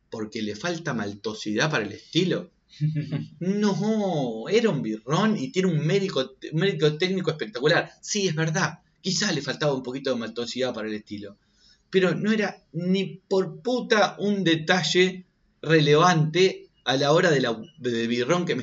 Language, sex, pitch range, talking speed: Spanish, male, 125-185 Hz, 150 wpm